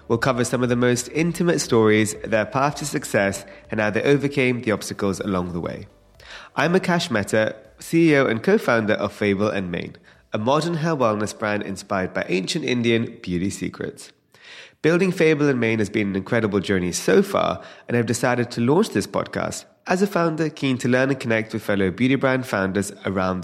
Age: 30-49